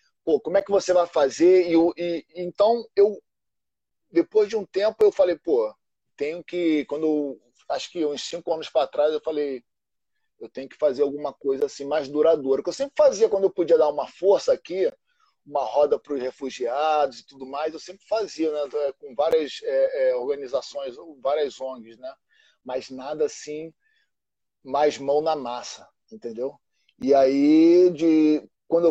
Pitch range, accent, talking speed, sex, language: 140-195 Hz, Brazilian, 170 wpm, male, English